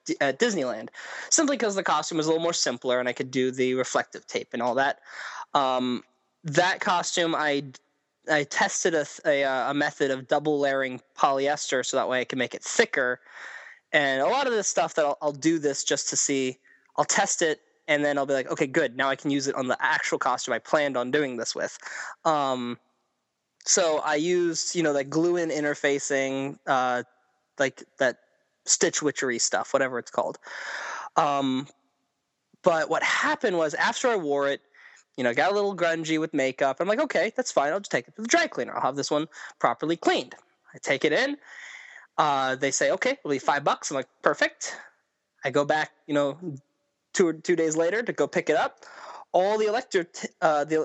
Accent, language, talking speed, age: American, English, 205 wpm, 20-39